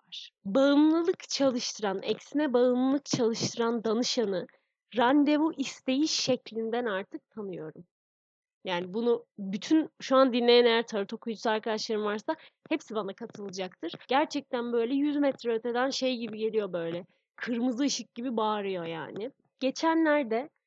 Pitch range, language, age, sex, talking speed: 205-270 Hz, Turkish, 30-49, female, 115 wpm